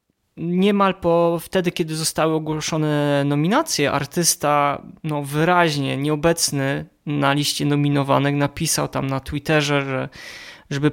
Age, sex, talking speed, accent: 20-39, male, 100 wpm, native